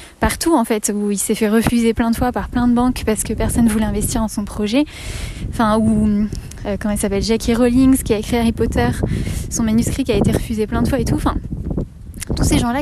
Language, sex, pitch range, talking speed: French, female, 220-260 Hz, 245 wpm